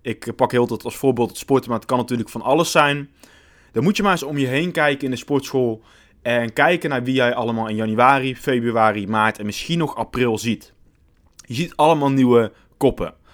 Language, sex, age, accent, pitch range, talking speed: Dutch, male, 20-39, Dutch, 115-145 Hz, 210 wpm